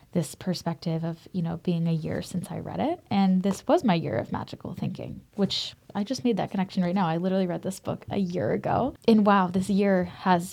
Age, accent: 10-29, American